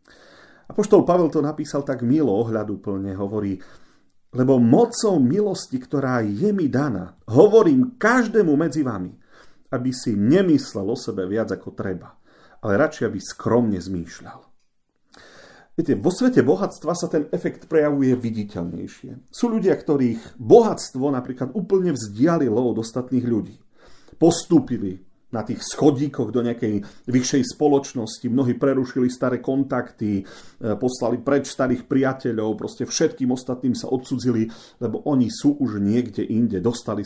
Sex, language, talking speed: male, Slovak, 130 wpm